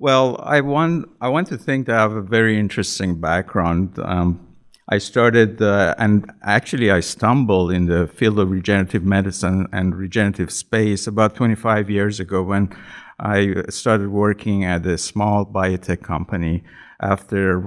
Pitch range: 90-110 Hz